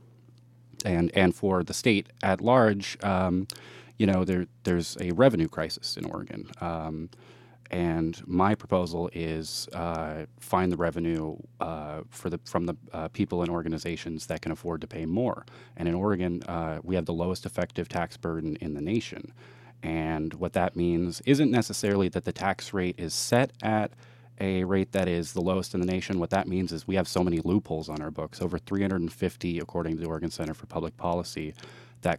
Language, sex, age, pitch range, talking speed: English, male, 30-49, 85-100 Hz, 185 wpm